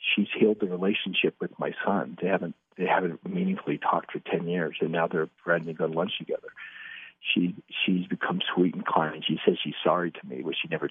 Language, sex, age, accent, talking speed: English, male, 60-79, American, 220 wpm